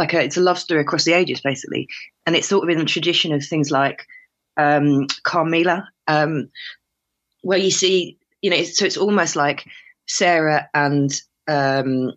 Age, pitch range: 20-39, 140-165 Hz